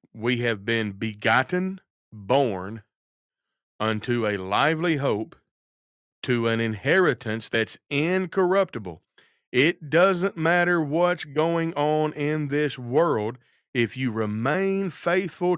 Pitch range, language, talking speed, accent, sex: 120-175 Hz, English, 105 wpm, American, male